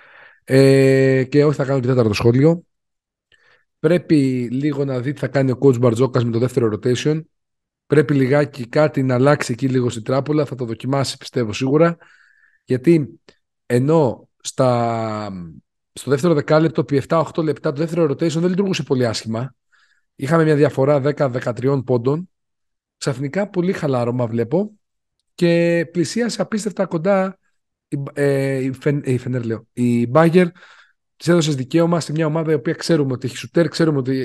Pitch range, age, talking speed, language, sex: 130-165 Hz, 40-59, 150 wpm, Greek, male